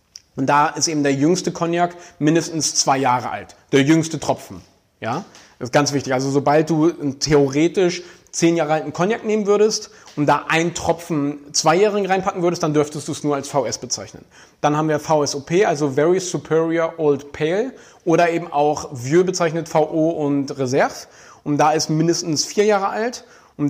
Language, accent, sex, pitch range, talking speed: German, German, male, 145-175 Hz, 175 wpm